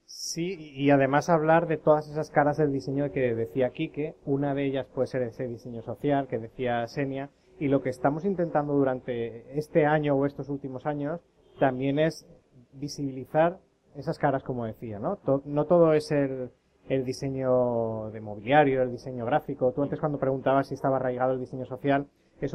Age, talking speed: 20-39, 175 wpm